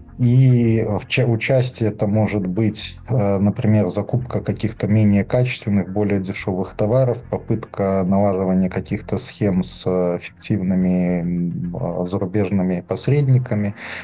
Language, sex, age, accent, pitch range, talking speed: Russian, male, 20-39, native, 100-120 Hz, 95 wpm